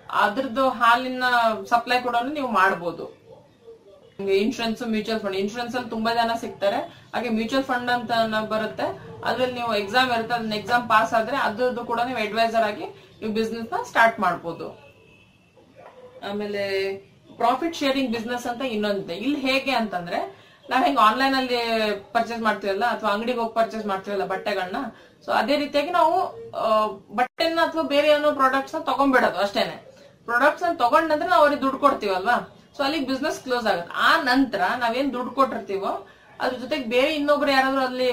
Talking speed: 145 wpm